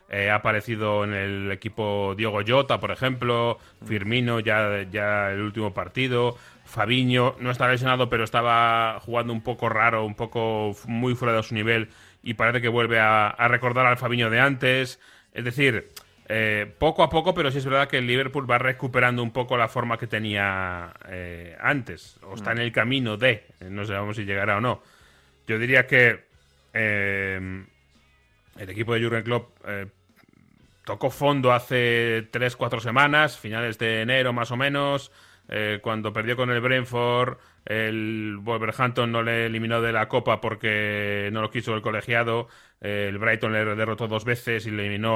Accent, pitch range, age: Spanish, 105-125 Hz, 30-49